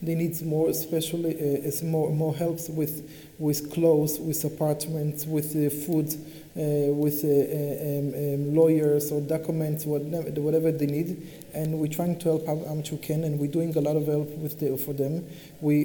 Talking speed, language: 180 wpm, English